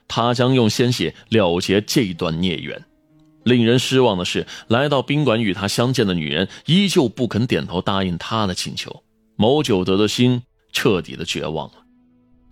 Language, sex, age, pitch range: Chinese, male, 20-39, 95-125 Hz